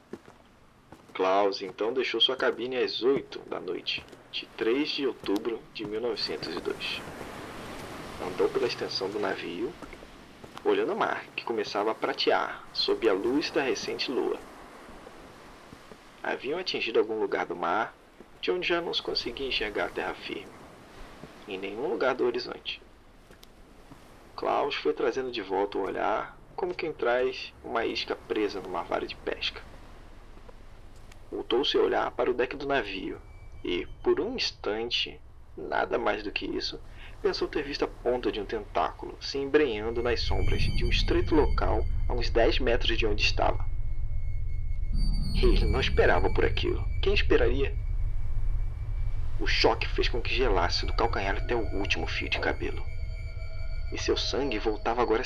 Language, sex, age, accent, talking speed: Portuguese, male, 40-59, Brazilian, 150 wpm